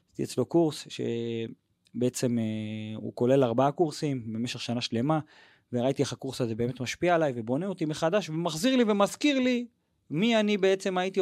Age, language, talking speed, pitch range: 30-49, Hebrew, 160 wpm, 120-160 Hz